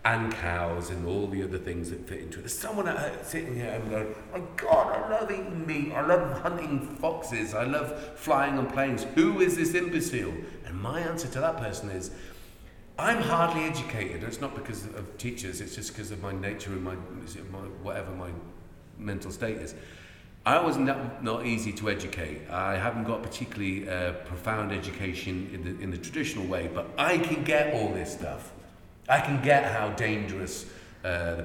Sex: male